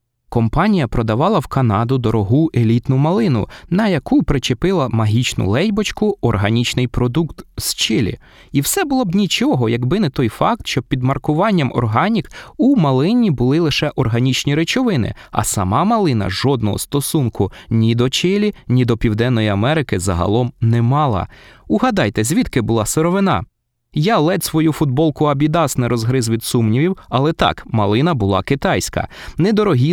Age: 20-39